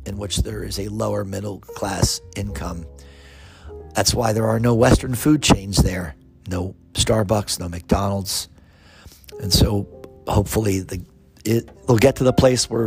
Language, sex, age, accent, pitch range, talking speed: English, male, 50-69, American, 90-115 Hz, 145 wpm